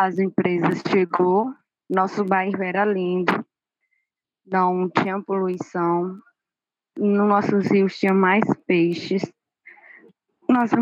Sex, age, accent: female, 10-29, Brazilian